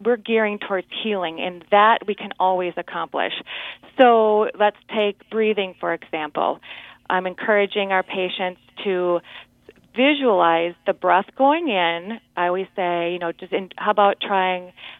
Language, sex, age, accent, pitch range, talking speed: English, female, 40-59, American, 180-220 Hz, 140 wpm